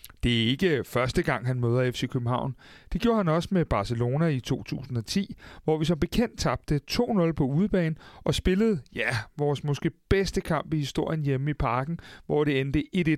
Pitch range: 125-160 Hz